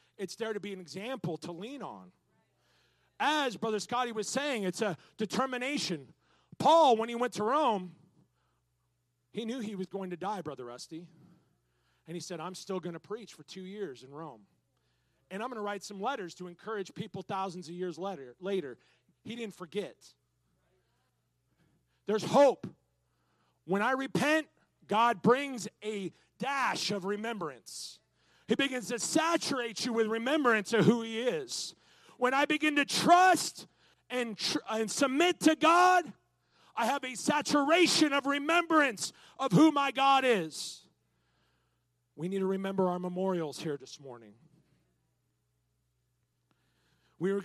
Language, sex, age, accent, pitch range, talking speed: English, male, 40-59, American, 165-245 Hz, 145 wpm